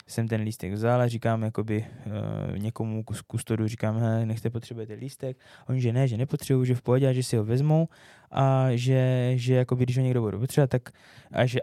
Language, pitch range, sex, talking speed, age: Czech, 115-130 Hz, male, 215 wpm, 20-39